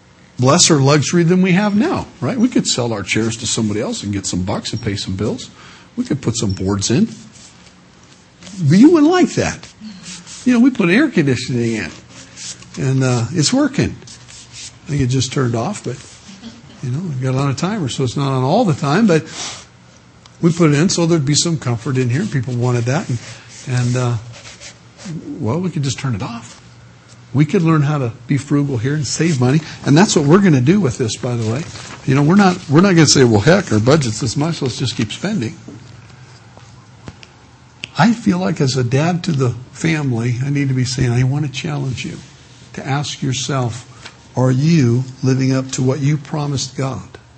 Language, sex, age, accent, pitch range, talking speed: English, male, 60-79, American, 120-160 Hz, 210 wpm